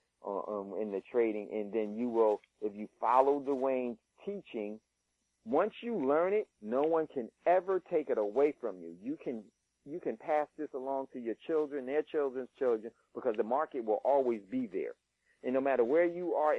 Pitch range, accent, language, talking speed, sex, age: 120-180 Hz, American, English, 190 wpm, male, 40-59